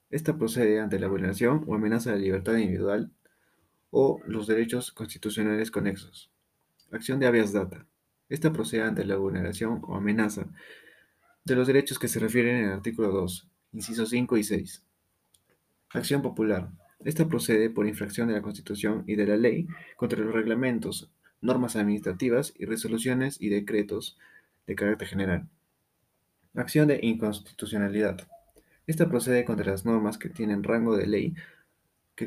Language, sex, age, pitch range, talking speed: Spanish, male, 30-49, 105-125 Hz, 150 wpm